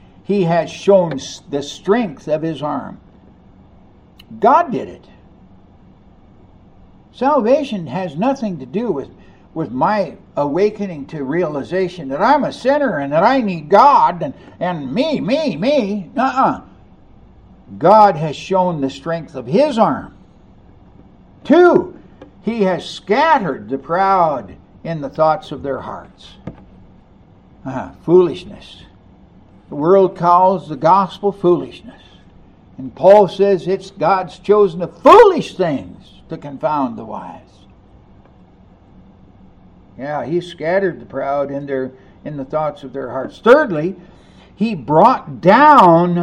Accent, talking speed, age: American, 125 wpm, 60-79